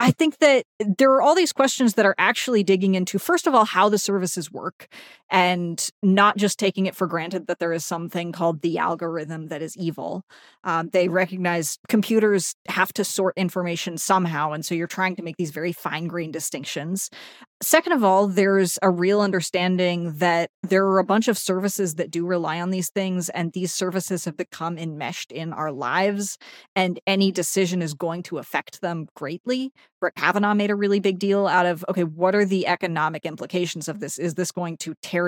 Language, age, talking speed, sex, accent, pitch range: English, 30-49, 200 wpm, female, American, 170-205 Hz